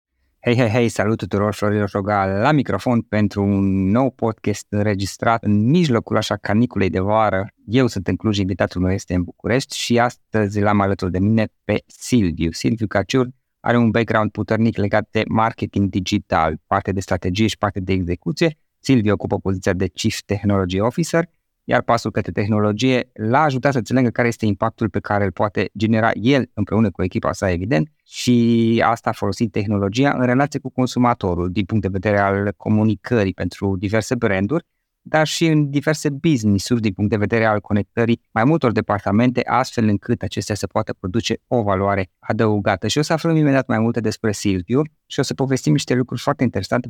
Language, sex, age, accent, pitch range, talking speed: Romanian, male, 20-39, native, 100-120 Hz, 180 wpm